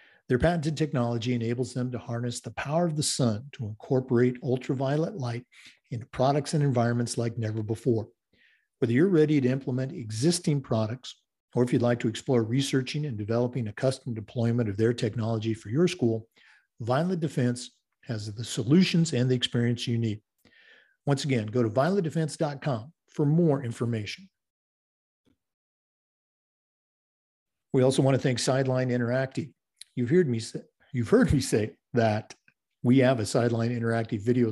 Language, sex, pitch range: English, male, 115-140 Hz